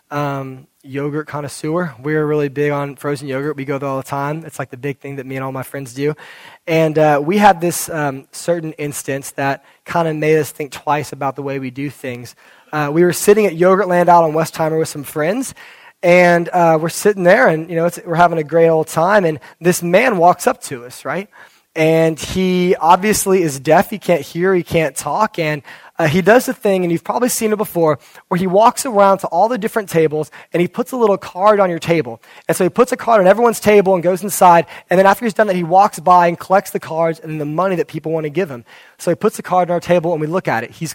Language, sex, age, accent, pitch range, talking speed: English, male, 20-39, American, 145-180 Hz, 255 wpm